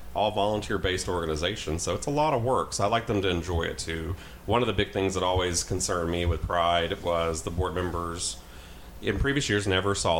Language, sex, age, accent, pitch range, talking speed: English, male, 30-49, American, 85-100 Hz, 220 wpm